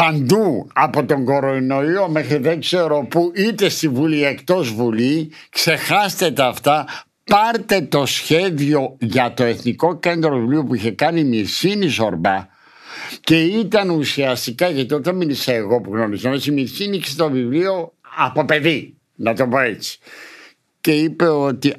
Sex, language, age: male, Greek, 60-79